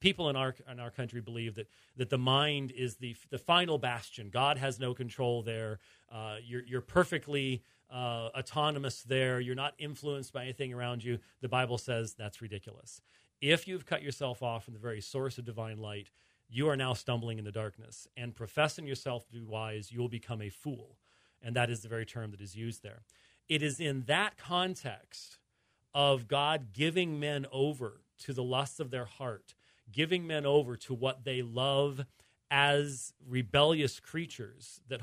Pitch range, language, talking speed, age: 120-145 Hz, English, 185 wpm, 40-59